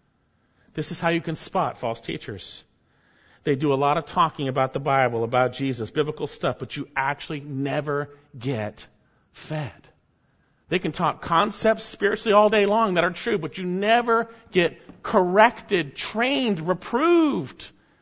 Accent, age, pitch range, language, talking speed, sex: American, 50-69, 140-205 Hz, English, 150 wpm, male